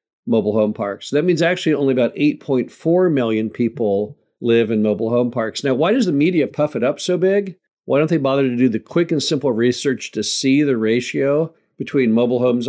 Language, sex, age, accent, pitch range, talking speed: English, male, 50-69, American, 115-150 Hz, 215 wpm